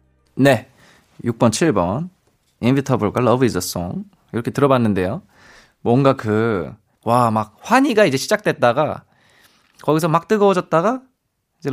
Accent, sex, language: native, male, Korean